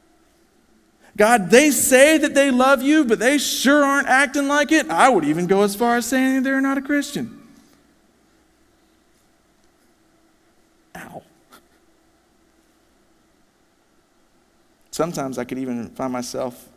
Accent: American